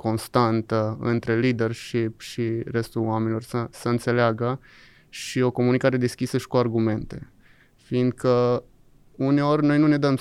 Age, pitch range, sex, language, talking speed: 20-39, 115-130 Hz, male, Romanian, 130 wpm